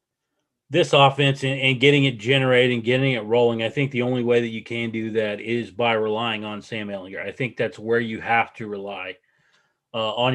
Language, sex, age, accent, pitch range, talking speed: English, male, 30-49, American, 115-135 Hz, 215 wpm